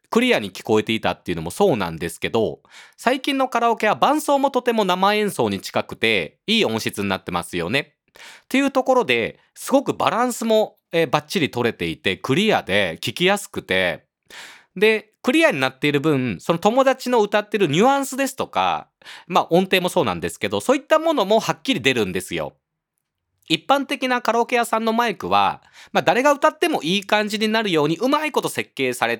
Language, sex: Japanese, male